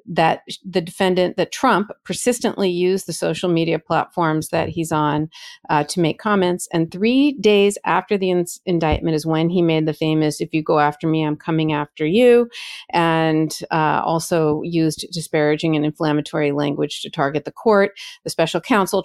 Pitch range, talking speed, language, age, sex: 155-185 Hz, 170 wpm, English, 40-59, female